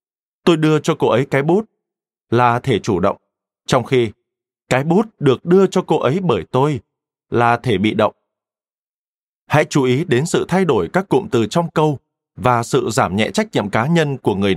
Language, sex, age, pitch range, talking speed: Vietnamese, male, 20-39, 120-175 Hz, 200 wpm